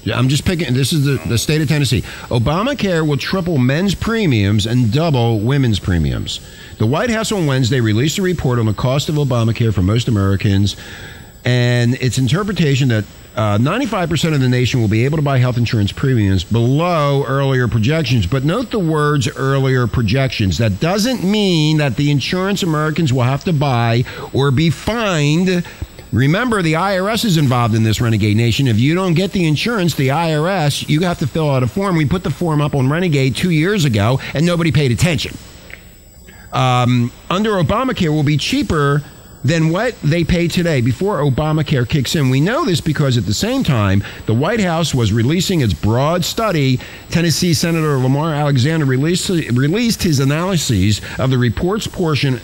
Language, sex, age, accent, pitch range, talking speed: English, male, 50-69, American, 120-170 Hz, 180 wpm